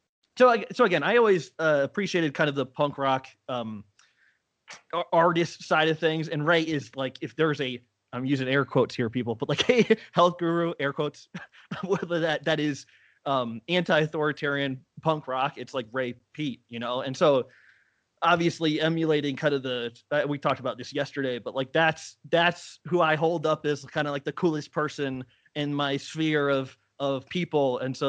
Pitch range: 130-160 Hz